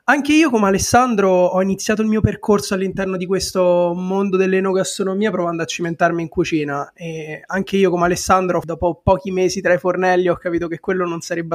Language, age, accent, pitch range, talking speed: Italian, 20-39, native, 165-195 Hz, 185 wpm